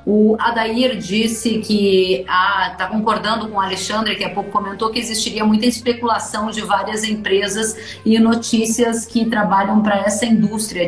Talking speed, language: 155 wpm, Portuguese